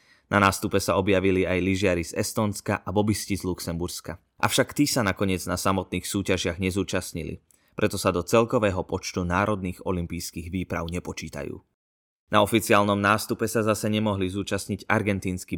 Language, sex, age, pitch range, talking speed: Slovak, male, 20-39, 90-105 Hz, 145 wpm